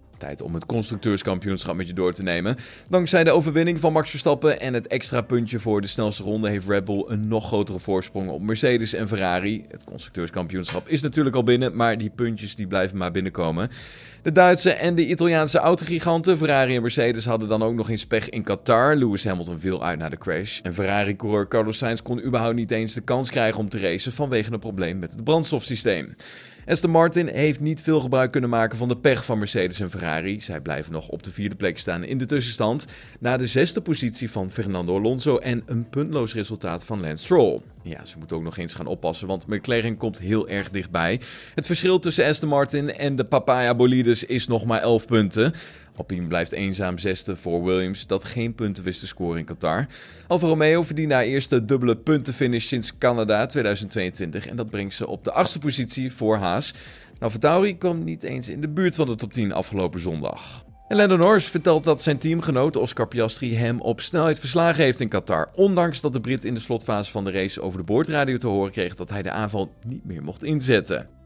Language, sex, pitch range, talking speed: Dutch, male, 95-140 Hz, 205 wpm